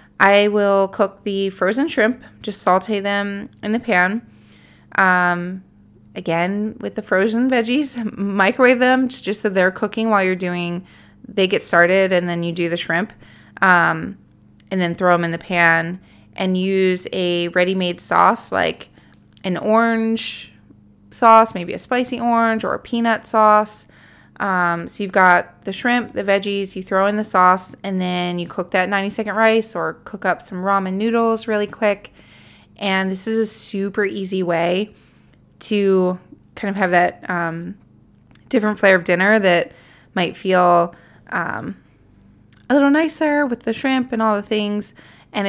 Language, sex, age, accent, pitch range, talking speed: English, female, 20-39, American, 180-220 Hz, 160 wpm